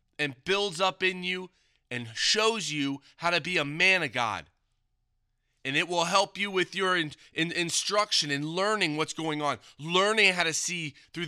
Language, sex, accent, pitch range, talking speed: English, male, American, 135-190 Hz, 175 wpm